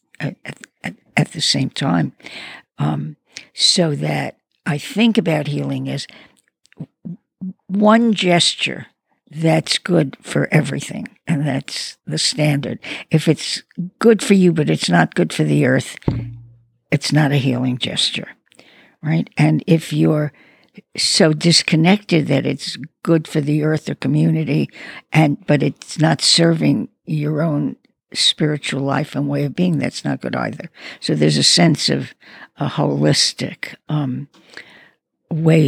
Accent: American